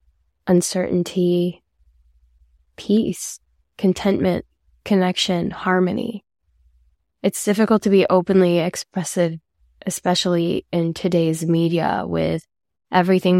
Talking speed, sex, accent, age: 75 wpm, female, American, 10-29